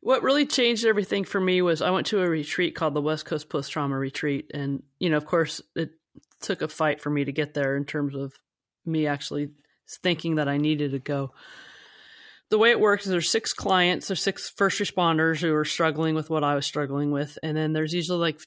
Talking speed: 225 wpm